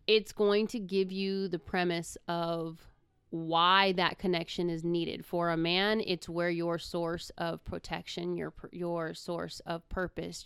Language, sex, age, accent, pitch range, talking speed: English, female, 30-49, American, 165-195 Hz, 155 wpm